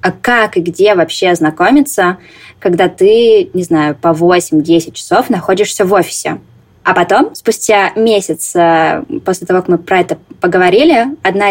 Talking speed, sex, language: 145 wpm, female, Russian